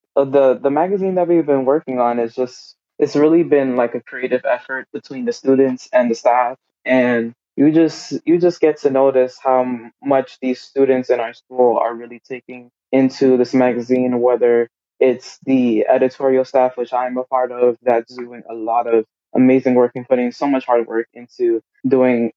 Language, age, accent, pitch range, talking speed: English, 20-39, American, 120-135 Hz, 185 wpm